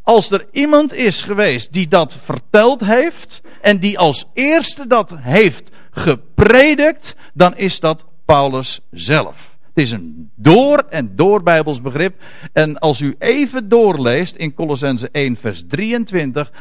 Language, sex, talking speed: Dutch, male, 140 wpm